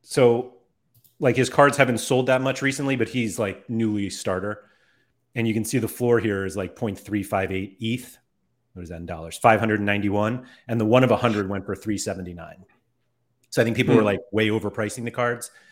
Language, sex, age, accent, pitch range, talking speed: English, male, 30-49, American, 100-125 Hz, 190 wpm